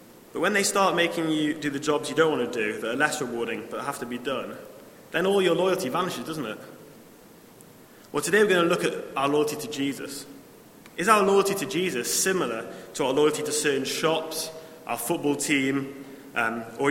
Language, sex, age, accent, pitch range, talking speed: English, male, 20-39, British, 135-170 Hz, 205 wpm